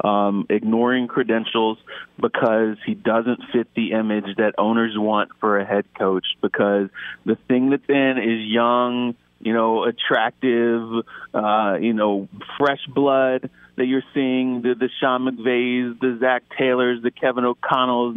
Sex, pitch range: male, 120-150 Hz